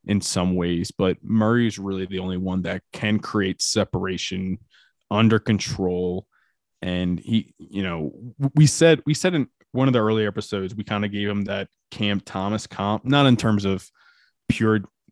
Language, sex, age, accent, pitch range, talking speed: English, male, 20-39, American, 95-115 Hz, 170 wpm